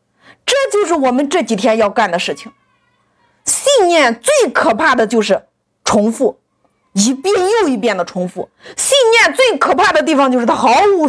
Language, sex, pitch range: Chinese, female, 225-335 Hz